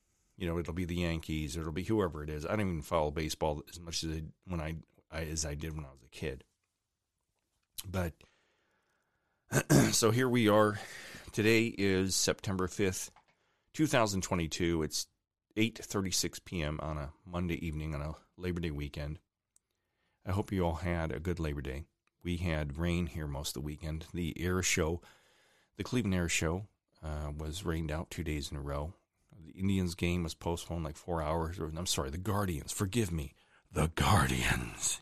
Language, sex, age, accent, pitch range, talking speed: English, male, 40-59, American, 75-95 Hz, 175 wpm